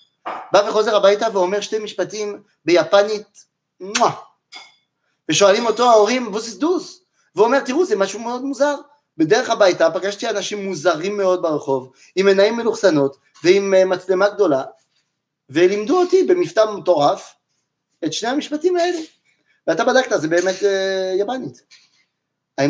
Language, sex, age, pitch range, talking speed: French, male, 30-49, 190-280 Hz, 125 wpm